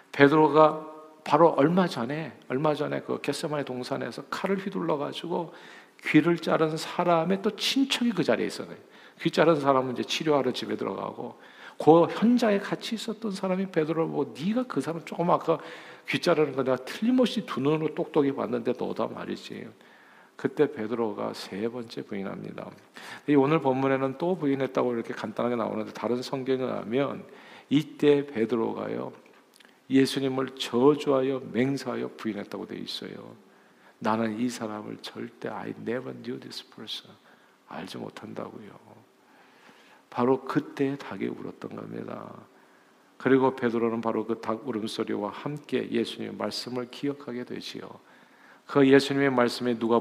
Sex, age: male, 50-69